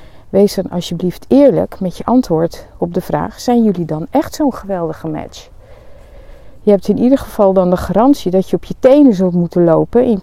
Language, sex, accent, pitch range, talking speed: Dutch, female, Dutch, 170-220 Hz, 200 wpm